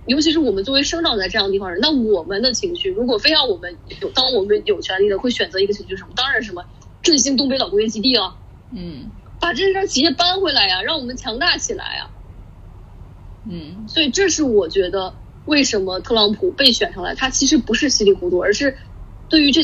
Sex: female